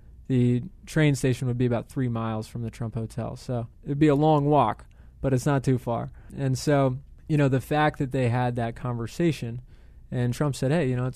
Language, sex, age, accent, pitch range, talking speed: English, male, 20-39, American, 115-140 Hz, 220 wpm